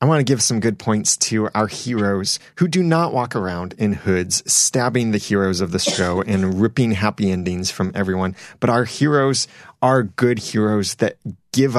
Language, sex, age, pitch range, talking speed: English, male, 30-49, 100-125 Hz, 190 wpm